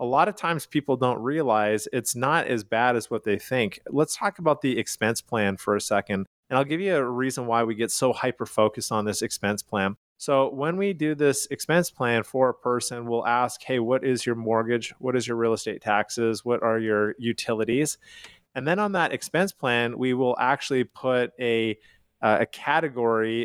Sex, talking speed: male, 200 wpm